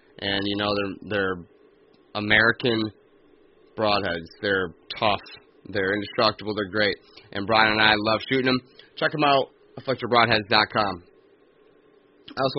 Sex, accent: male, American